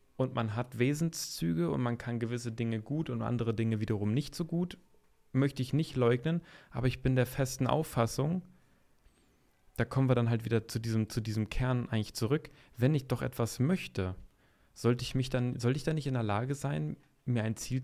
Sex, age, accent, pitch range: male, 30-49, German, 115-140 Hz